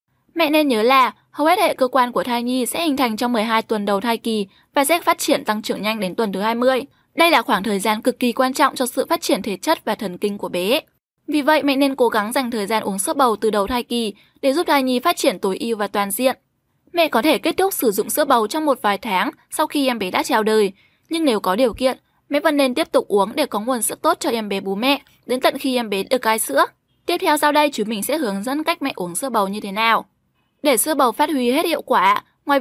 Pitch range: 220-290 Hz